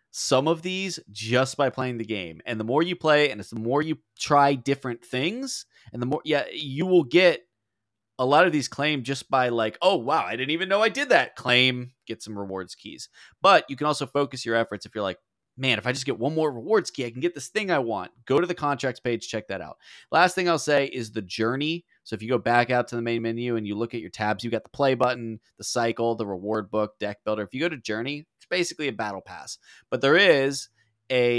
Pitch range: 105-130 Hz